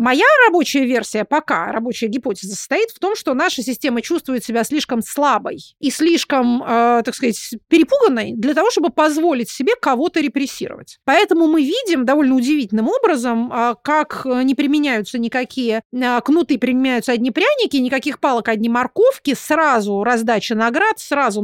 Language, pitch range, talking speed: Russian, 235-300 Hz, 140 wpm